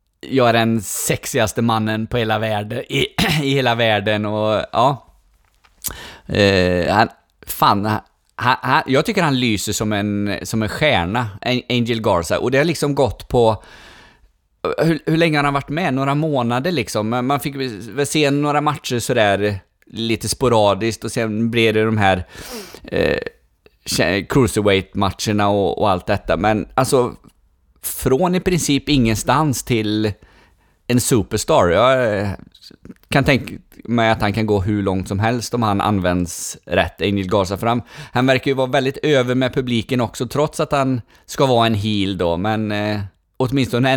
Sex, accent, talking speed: male, native, 160 wpm